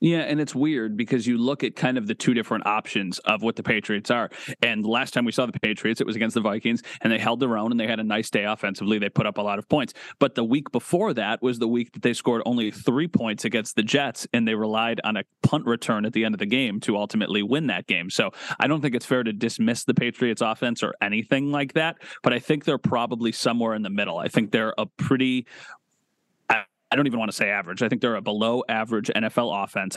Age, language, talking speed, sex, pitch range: 30-49, English, 260 wpm, male, 110-130 Hz